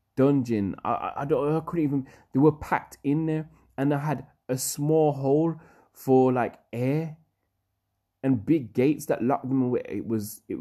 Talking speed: 175 wpm